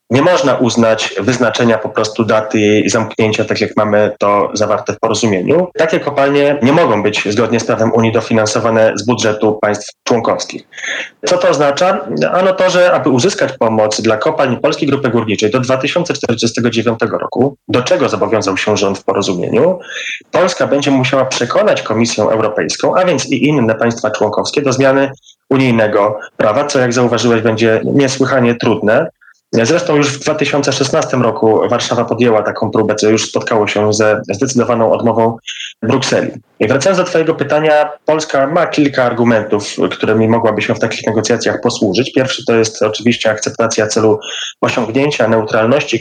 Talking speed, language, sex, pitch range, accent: 150 wpm, Polish, male, 110-135 Hz, native